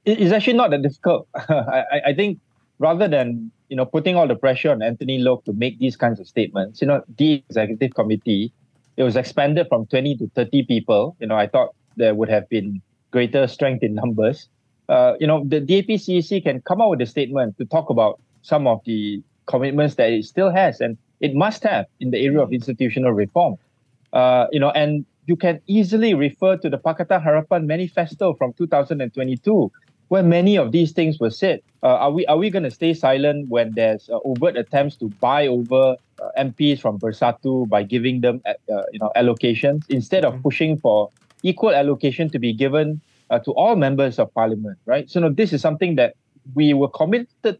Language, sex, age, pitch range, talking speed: English, male, 20-39, 120-160 Hz, 200 wpm